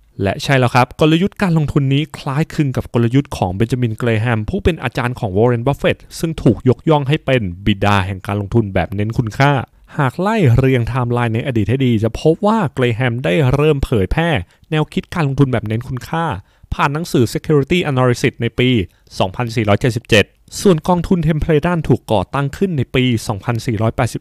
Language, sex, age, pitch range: Thai, male, 20-39, 120-155 Hz